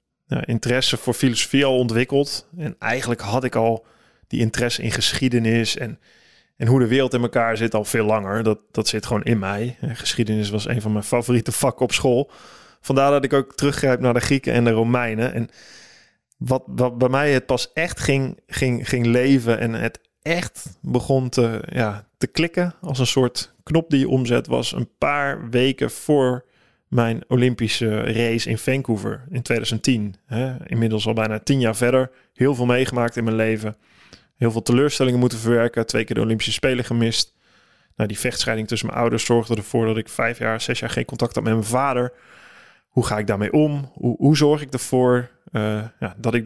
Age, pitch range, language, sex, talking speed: 20-39, 110-130 Hz, Dutch, male, 190 wpm